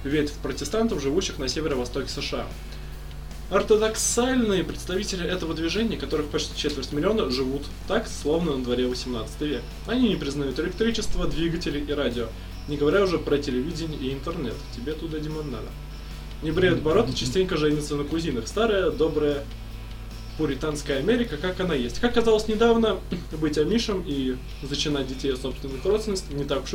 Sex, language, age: male, Russian, 20-39